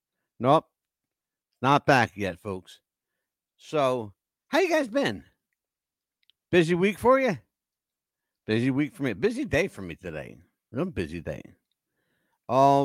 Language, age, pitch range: English, 60-79, 125-190 Hz